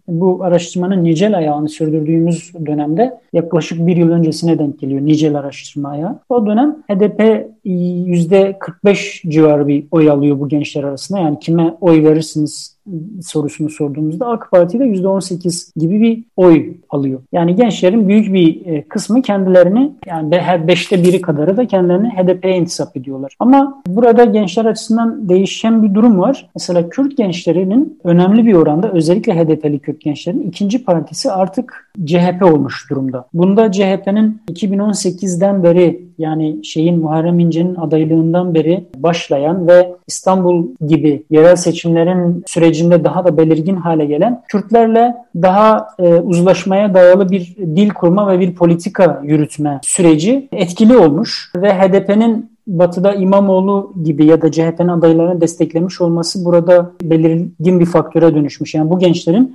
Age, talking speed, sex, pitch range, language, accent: 40-59, 135 wpm, male, 160-200 Hz, Turkish, native